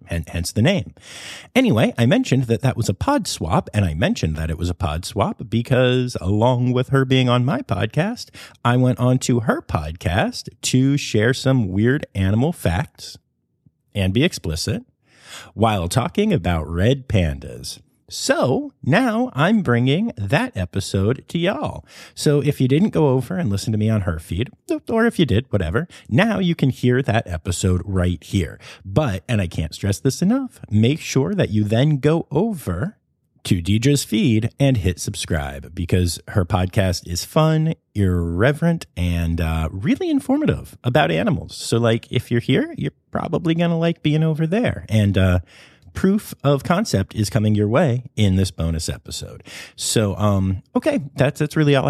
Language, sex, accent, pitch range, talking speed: English, male, American, 100-140 Hz, 170 wpm